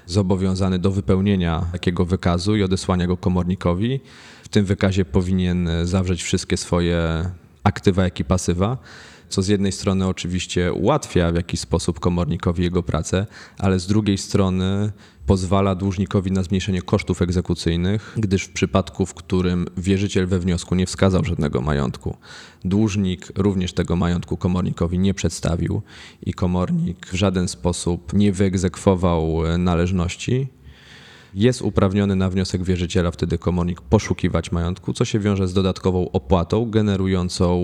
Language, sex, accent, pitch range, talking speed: Polish, male, native, 85-100 Hz, 135 wpm